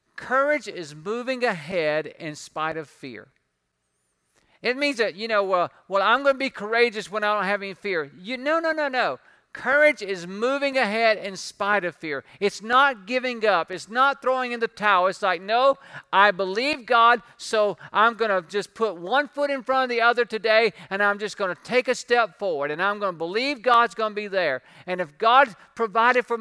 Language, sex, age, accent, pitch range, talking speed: English, male, 50-69, American, 165-235 Hz, 210 wpm